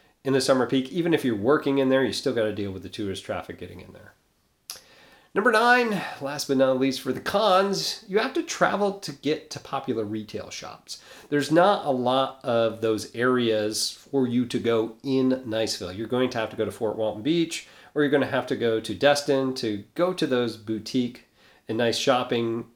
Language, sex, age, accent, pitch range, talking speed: English, male, 40-59, American, 110-140 Hz, 215 wpm